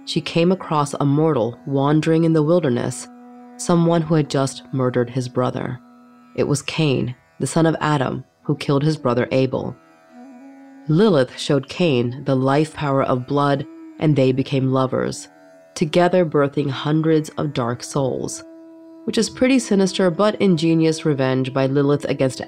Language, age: English, 30-49